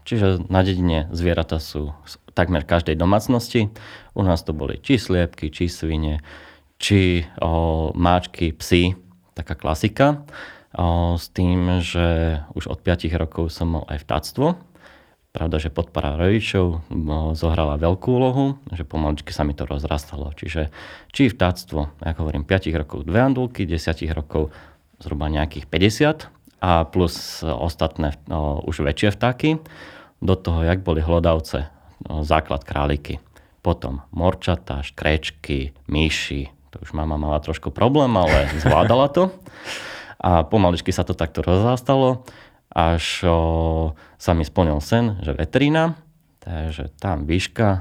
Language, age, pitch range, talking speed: Slovak, 30-49, 75-95 Hz, 130 wpm